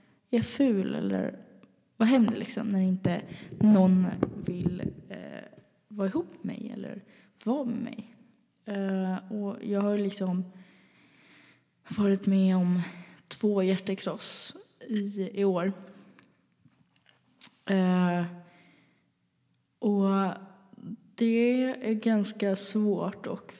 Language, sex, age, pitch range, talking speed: Swedish, female, 20-39, 185-220 Hz, 105 wpm